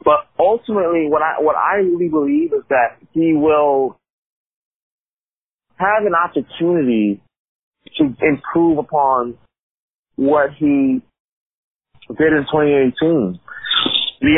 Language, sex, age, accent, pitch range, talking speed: English, male, 30-49, American, 140-180 Hz, 95 wpm